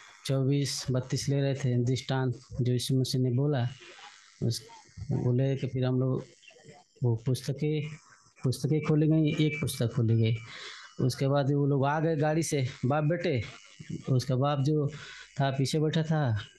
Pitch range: 130-160 Hz